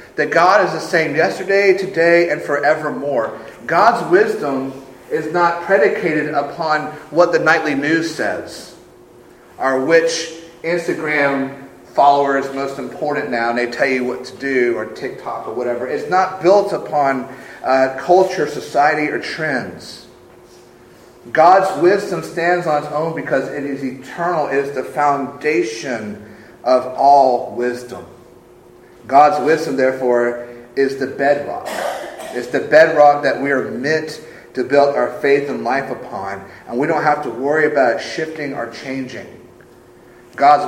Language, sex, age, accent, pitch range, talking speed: English, male, 40-59, American, 120-150 Hz, 145 wpm